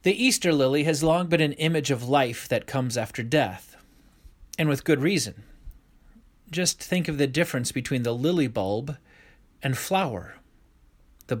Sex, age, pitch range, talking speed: male, 30-49, 115-155 Hz, 160 wpm